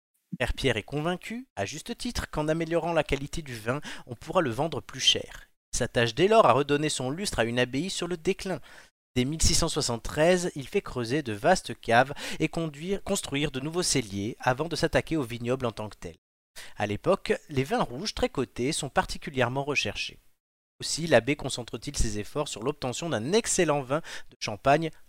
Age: 30-49